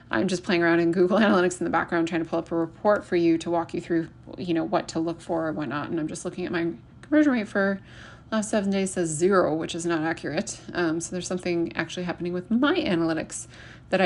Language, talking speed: English, 250 wpm